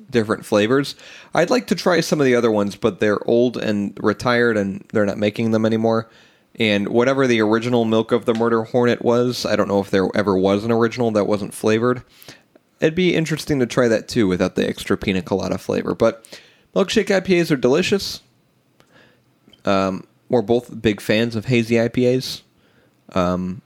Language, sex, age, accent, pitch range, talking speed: English, male, 20-39, American, 100-125 Hz, 180 wpm